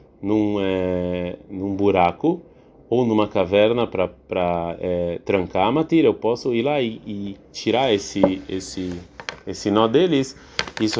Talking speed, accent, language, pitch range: 135 wpm, Brazilian, Portuguese, 95-120 Hz